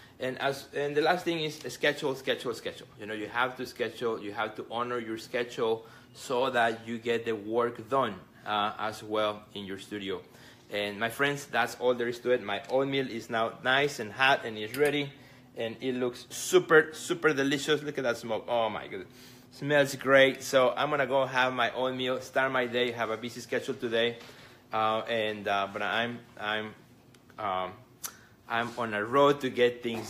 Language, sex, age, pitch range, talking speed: English, male, 30-49, 115-140 Hz, 195 wpm